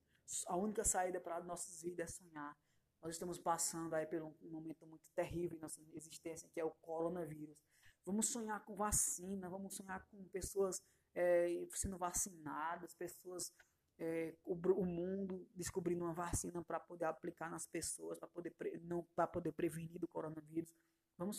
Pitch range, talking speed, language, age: 160-180 Hz, 165 wpm, Portuguese, 20-39